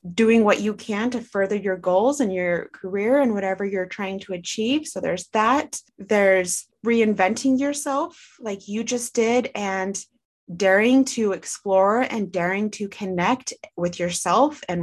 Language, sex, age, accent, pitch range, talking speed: English, female, 20-39, American, 190-240 Hz, 155 wpm